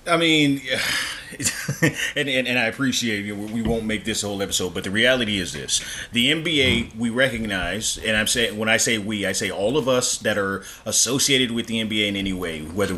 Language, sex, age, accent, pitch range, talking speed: English, male, 30-49, American, 100-125 Hz, 210 wpm